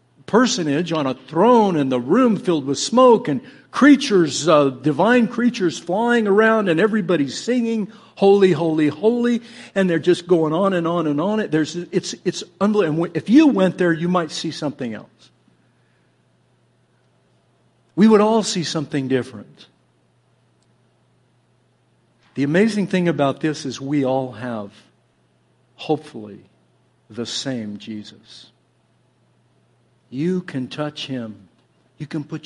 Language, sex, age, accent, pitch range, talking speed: English, male, 60-79, American, 125-180 Hz, 130 wpm